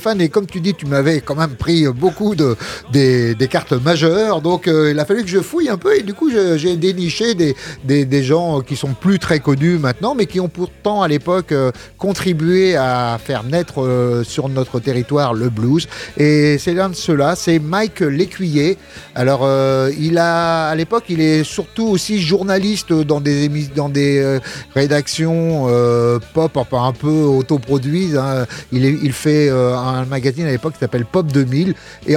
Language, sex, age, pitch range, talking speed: French, male, 30-49, 135-175 Hz, 195 wpm